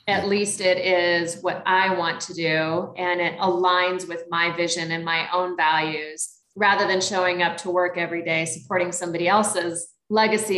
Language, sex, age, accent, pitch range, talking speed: English, female, 30-49, American, 170-200 Hz, 175 wpm